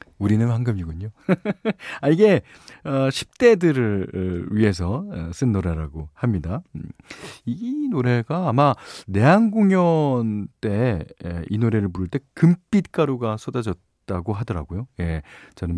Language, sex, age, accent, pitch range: Korean, male, 40-59, native, 90-140 Hz